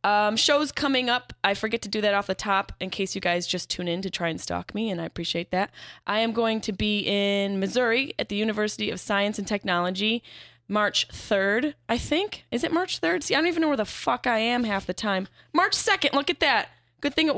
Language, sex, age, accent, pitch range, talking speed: English, female, 10-29, American, 185-235 Hz, 245 wpm